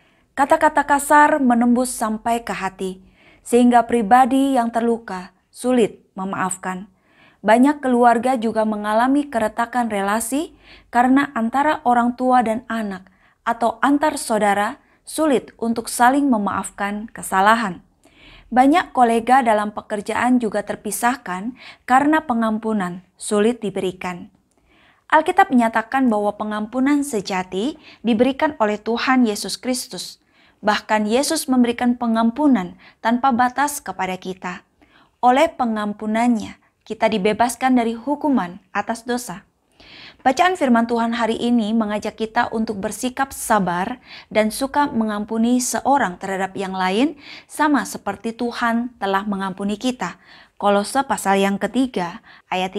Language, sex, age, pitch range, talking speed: Indonesian, female, 20-39, 205-255 Hz, 110 wpm